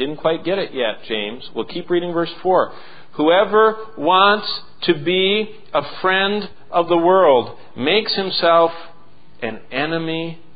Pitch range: 115-175 Hz